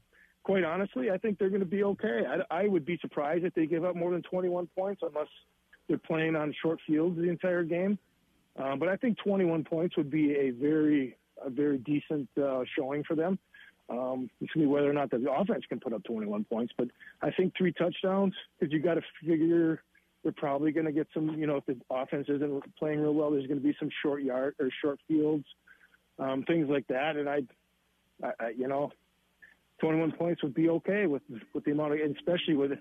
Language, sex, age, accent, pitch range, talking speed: English, male, 40-59, American, 145-175 Hz, 220 wpm